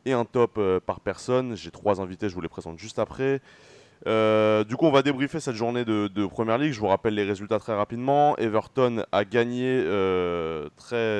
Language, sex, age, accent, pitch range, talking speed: French, male, 20-39, French, 100-125 Hz, 205 wpm